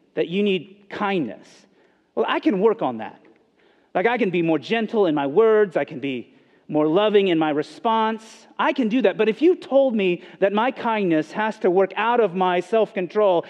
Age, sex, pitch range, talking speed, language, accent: 40-59, male, 140-215 Hz, 205 wpm, English, American